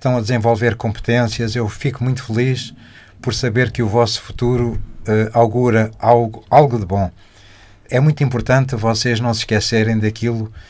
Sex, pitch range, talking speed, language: male, 110-125 Hz, 155 wpm, Portuguese